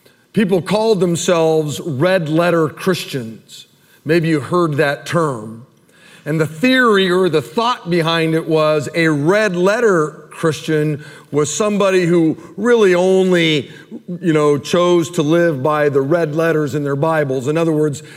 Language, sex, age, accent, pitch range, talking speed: English, male, 50-69, American, 155-200 Hz, 140 wpm